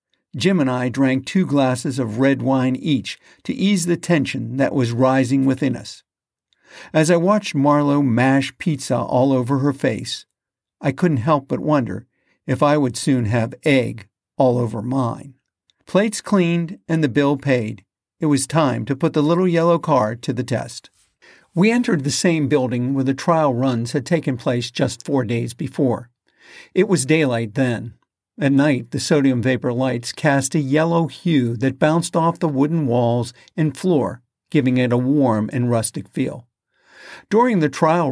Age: 50-69